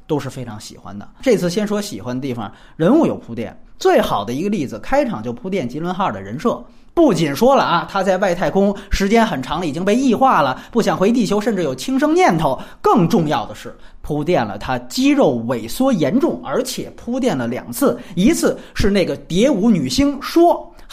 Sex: male